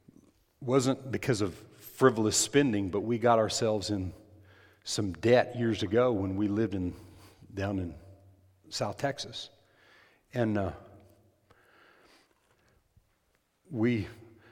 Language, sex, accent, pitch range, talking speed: English, male, American, 95-115 Hz, 105 wpm